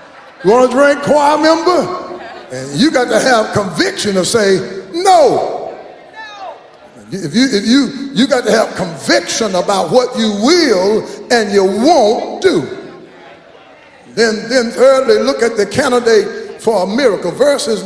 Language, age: English, 50-69